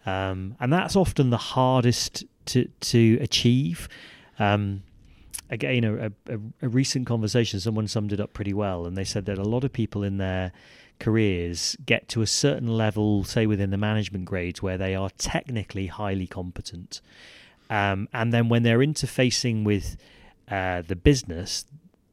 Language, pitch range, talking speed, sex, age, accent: English, 100-120 Hz, 155 wpm, male, 30-49, British